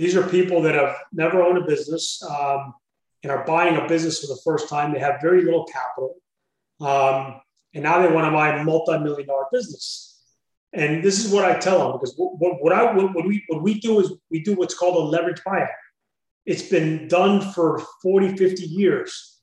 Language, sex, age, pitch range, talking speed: English, male, 30-49, 150-185 Hz, 205 wpm